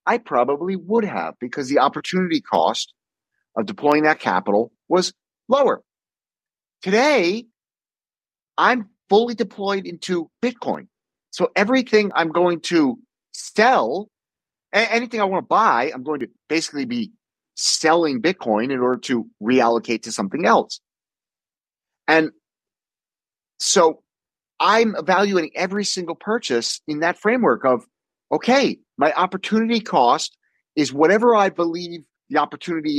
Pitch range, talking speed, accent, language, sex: 135-205 Hz, 120 wpm, American, English, male